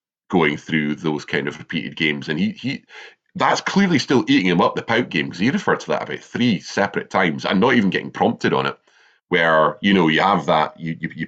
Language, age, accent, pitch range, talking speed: English, 30-49, British, 80-95 Hz, 225 wpm